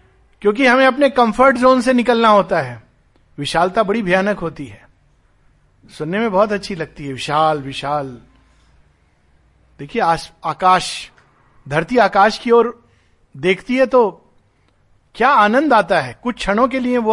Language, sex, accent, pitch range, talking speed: Hindi, male, native, 160-245 Hz, 140 wpm